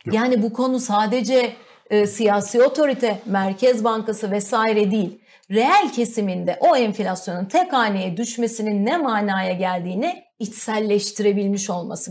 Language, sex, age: Turkish, female, 40-59